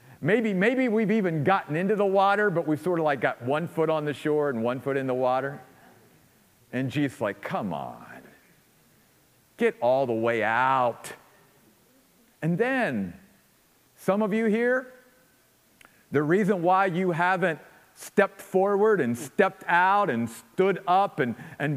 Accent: American